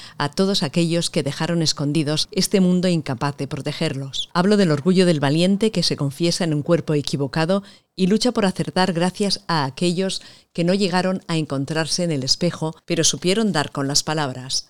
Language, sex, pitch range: Spanish, female, 145-185 Hz